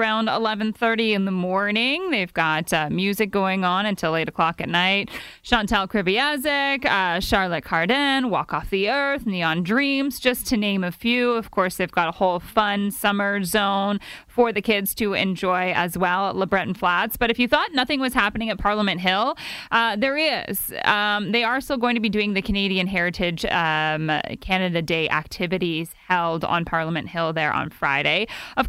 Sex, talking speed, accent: female, 180 wpm, American